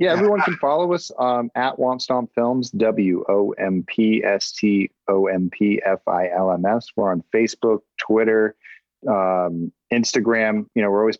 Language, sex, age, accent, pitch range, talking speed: English, male, 30-49, American, 100-115 Hz, 105 wpm